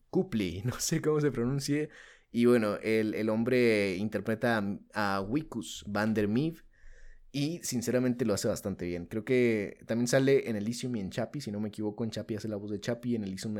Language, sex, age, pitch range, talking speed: Spanish, male, 20-39, 100-120 Hz, 205 wpm